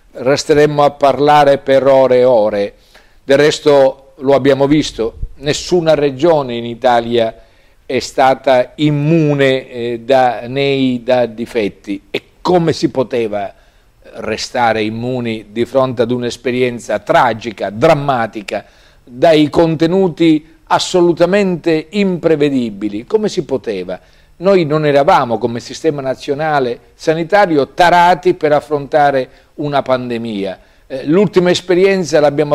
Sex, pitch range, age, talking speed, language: male, 120-155 Hz, 50-69, 105 wpm, Italian